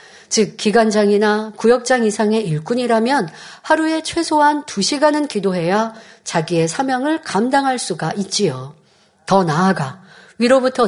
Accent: native